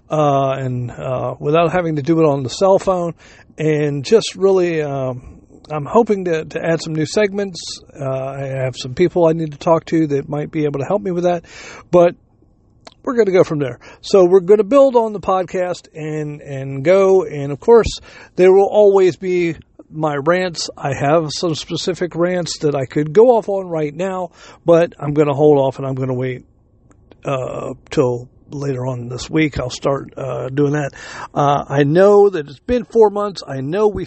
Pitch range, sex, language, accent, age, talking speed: 140-185 Hz, male, English, American, 50-69, 205 wpm